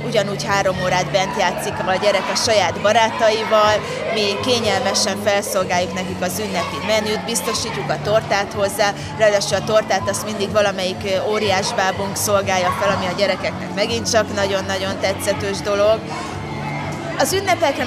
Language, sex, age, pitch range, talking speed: Hungarian, female, 30-49, 195-230 Hz, 135 wpm